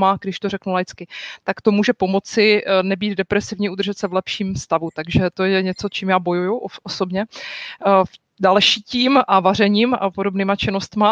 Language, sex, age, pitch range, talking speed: Czech, female, 30-49, 190-225 Hz, 175 wpm